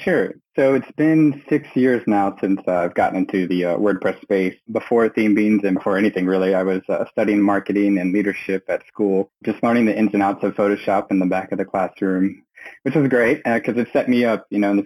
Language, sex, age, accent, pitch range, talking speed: English, male, 20-39, American, 95-110 Hz, 240 wpm